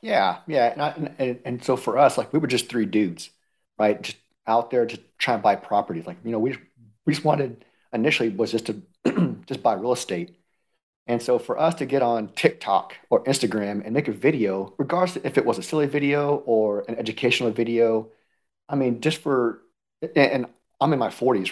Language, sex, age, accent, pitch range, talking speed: English, male, 40-59, American, 110-145 Hz, 205 wpm